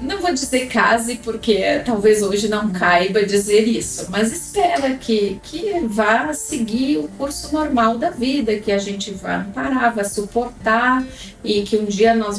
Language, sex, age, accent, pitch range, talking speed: Portuguese, female, 30-49, Brazilian, 190-265 Hz, 165 wpm